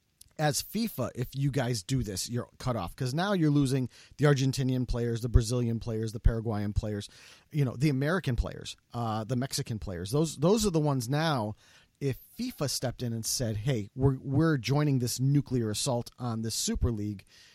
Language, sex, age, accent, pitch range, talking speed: English, male, 30-49, American, 120-145 Hz, 190 wpm